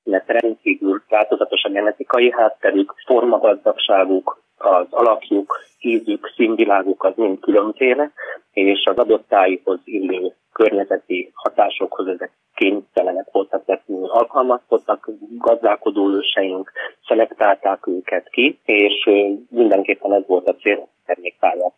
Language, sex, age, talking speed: Hungarian, male, 30-49, 110 wpm